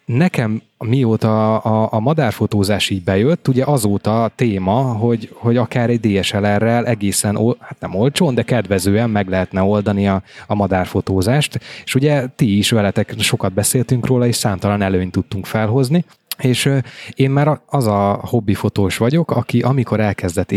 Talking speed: 145 wpm